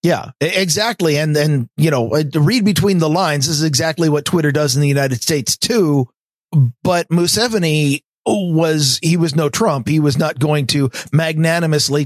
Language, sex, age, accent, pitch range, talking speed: English, male, 50-69, American, 130-170 Hz, 170 wpm